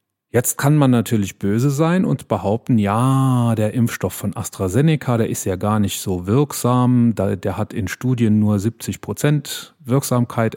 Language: German